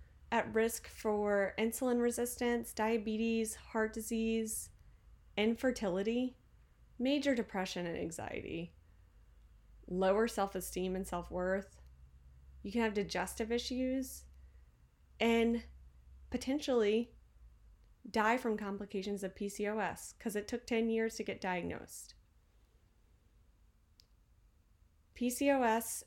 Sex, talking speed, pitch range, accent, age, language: female, 85 wpm, 175-220 Hz, American, 30-49, English